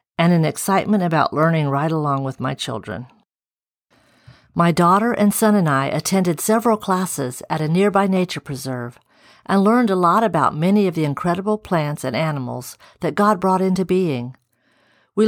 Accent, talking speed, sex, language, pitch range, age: American, 165 wpm, female, English, 155-205 Hz, 50-69